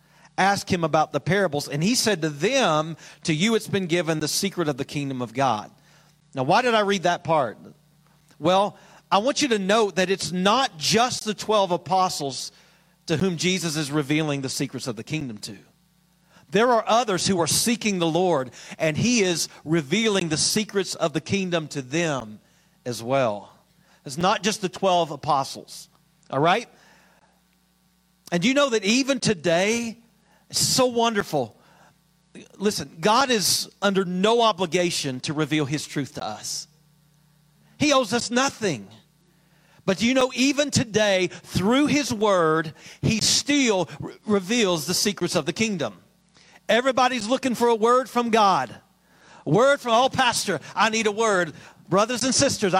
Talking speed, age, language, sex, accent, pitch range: 165 wpm, 40-59, English, male, American, 160-220 Hz